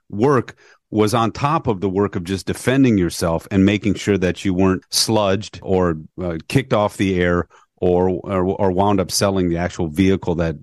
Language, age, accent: English, 40-59, American